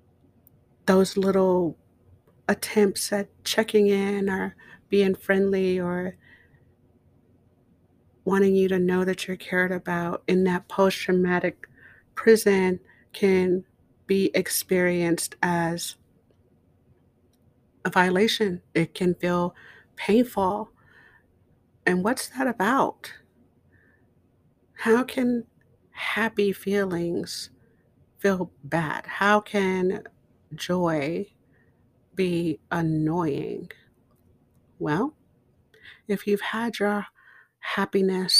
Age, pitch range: 50-69, 170-200 Hz